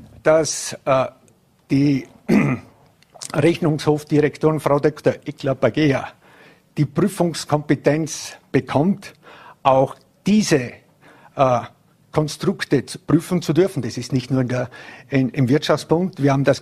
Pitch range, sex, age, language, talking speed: 125-155 Hz, male, 50-69, German, 90 wpm